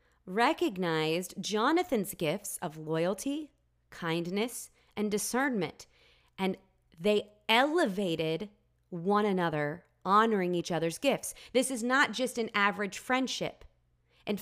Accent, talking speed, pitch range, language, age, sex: American, 105 wpm, 155-215 Hz, English, 30-49, female